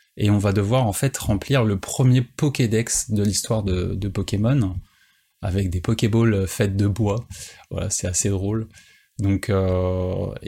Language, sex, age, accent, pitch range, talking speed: French, male, 20-39, French, 95-120 Hz, 155 wpm